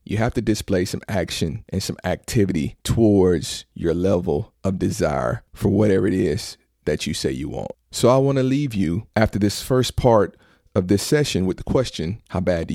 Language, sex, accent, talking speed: English, male, American, 200 wpm